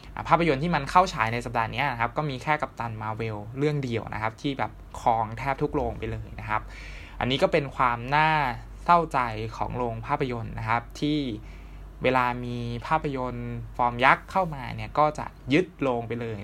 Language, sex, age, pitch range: Thai, male, 20-39, 110-140 Hz